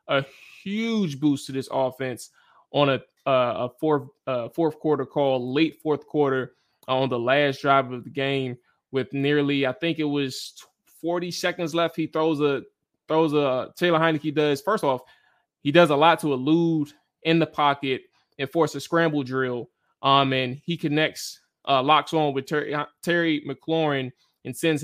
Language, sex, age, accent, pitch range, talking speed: English, male, 20-39, American, 135-155 Hz, 175 wpm